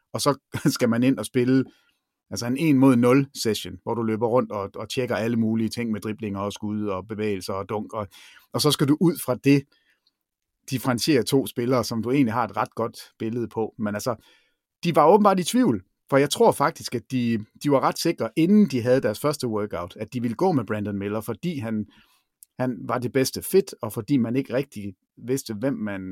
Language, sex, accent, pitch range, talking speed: Danish, male, native, 105-135 Hz, 210 wpm